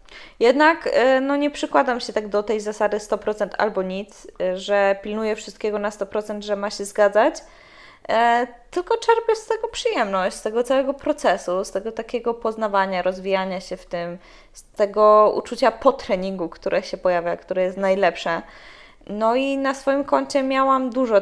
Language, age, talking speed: Polish, 20-39, 155 wpm